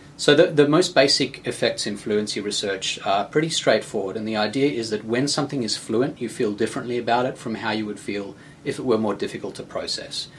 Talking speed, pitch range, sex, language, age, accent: 220 wpm, 105-135 Hz, male, English, 30-49, Australian